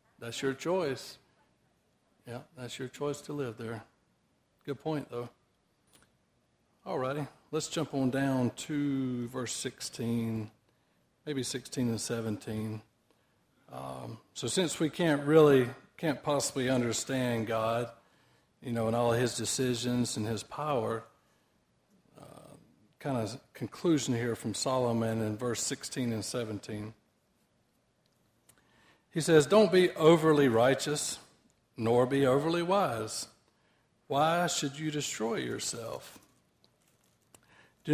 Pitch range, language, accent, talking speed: 115-145 Hz, English, American, 115 wpm